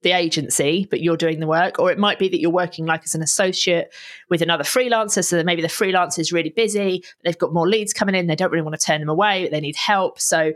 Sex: female